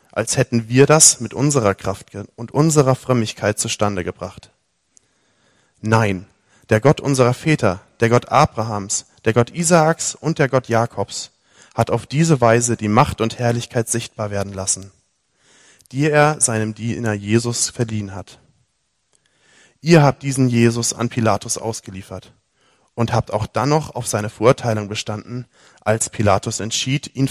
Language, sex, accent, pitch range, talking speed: German, male, German, 105-130 Hz, 145 wpm